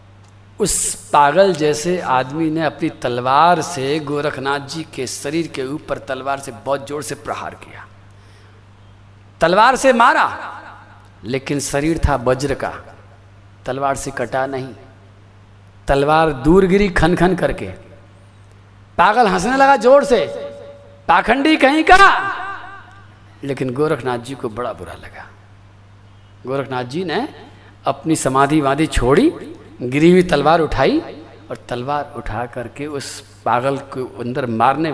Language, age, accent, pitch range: Hindi, 50-69, native, 105-160 Hz